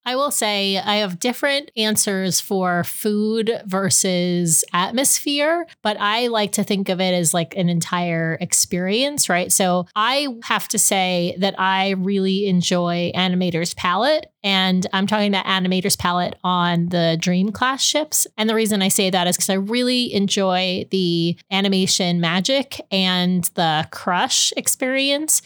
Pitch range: 170-200 Hz